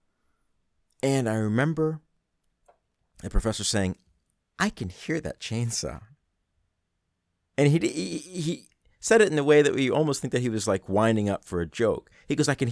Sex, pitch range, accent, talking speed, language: male, 90-115 Hz, American, 175 wpm, English